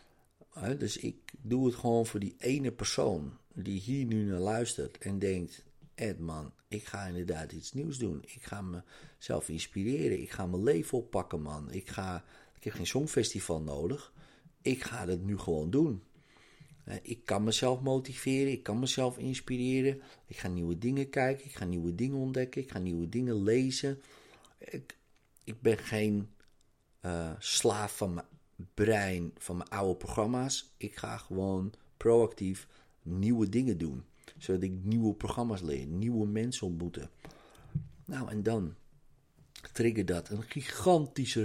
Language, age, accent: Dutch, 50-69, Dutch